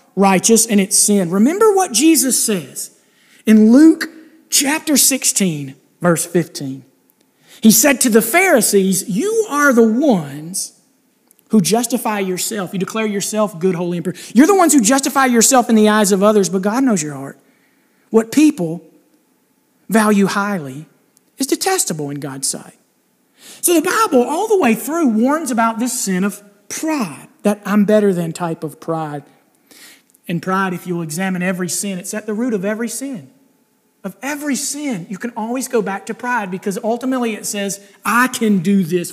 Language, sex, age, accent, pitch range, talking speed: English, male, 40-59, American, 190-255 Hz, 170 wpm